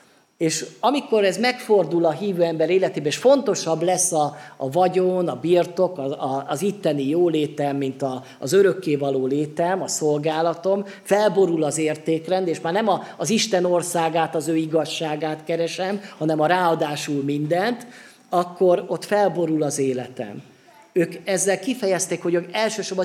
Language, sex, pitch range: Hungarian, male, 150-195 Hz